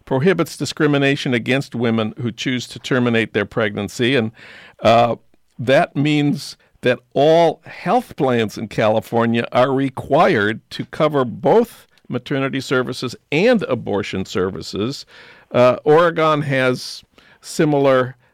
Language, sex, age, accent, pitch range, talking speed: English, male, 50-69, American, 115-135 Hz, 110 wpm